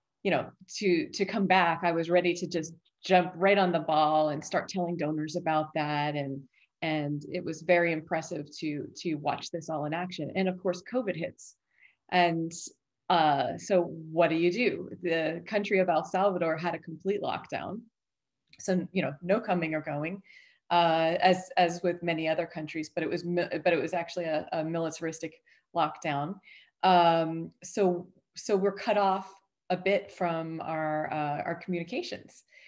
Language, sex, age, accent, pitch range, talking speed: English, female, 30-49, American, 165-190 Hz, 175 wpm